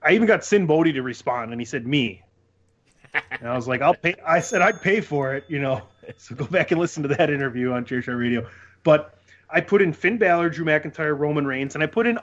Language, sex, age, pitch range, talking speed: English, male, 30-49, 115-160 Hz, 245 wpm